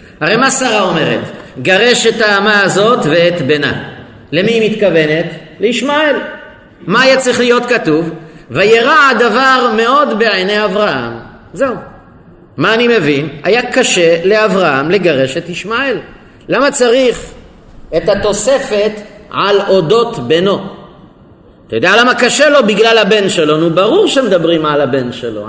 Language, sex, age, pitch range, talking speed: Hebrew, male, 50-69, 155-225 Hz, 130 wpm